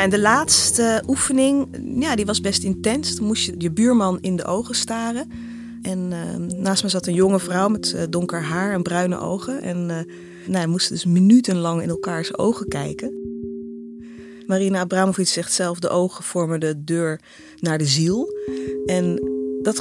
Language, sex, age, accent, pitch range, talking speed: Dutch, female, 30-49, Dutch, 160-195 Hz, 175 wpm